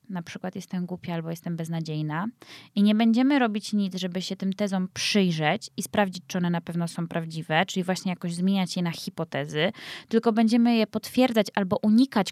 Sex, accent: female, native